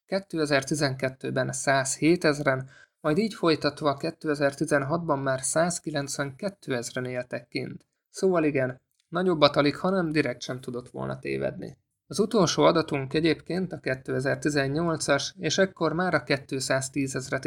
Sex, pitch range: male, 135-160 Hz